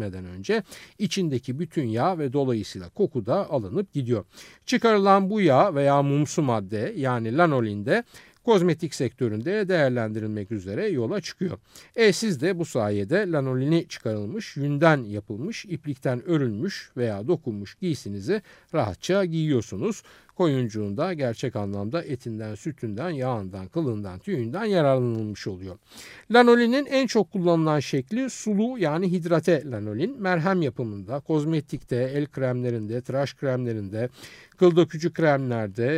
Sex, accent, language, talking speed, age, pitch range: male, native, Turkish, 115 wpm, 50-69, 120-180 Hz